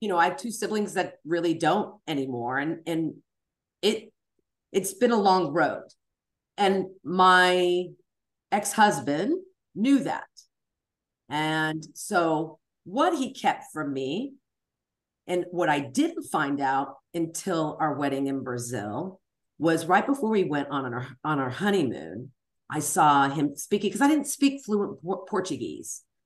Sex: female